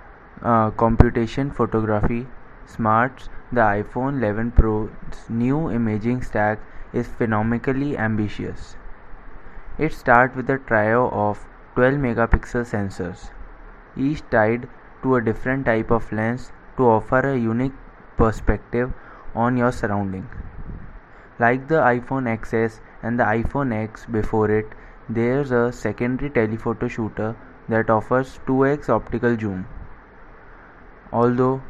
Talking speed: 115 wpm